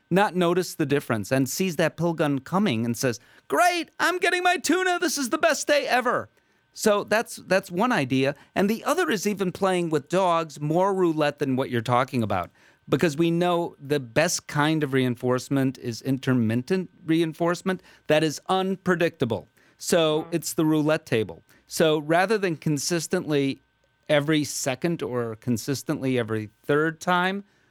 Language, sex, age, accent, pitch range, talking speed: English, male, 40-59, American, 140-185 Hz, 160 wpm